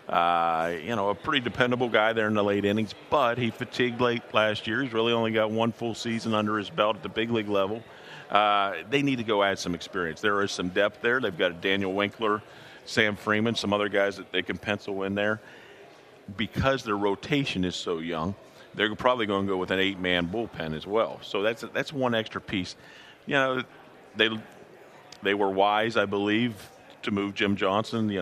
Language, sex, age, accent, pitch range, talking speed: English, male, 50-69, American, 95-115 Hz, 210 wpm